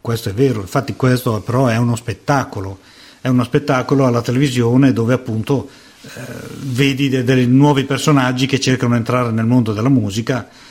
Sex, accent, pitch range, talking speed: male, native, 115-140 Hz, 165 wpm